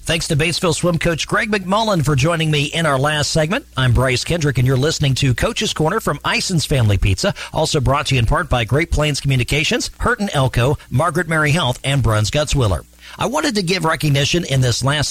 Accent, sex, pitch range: American, male, 120-165 Hz